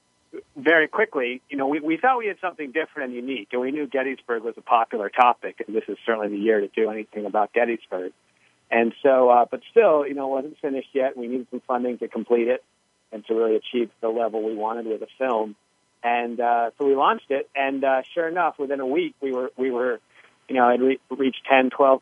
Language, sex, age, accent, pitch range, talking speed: English, male, 40-59, American, 110-135 Hz, 230 wpm